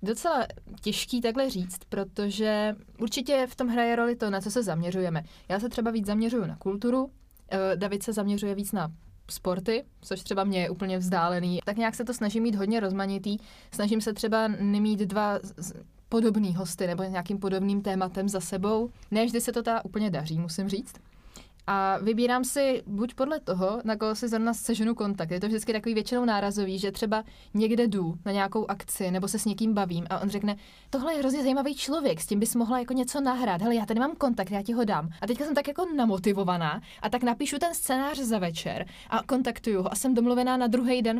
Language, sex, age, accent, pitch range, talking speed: Czech, female, 20-39, native, 195-235 Hz, 205 wpm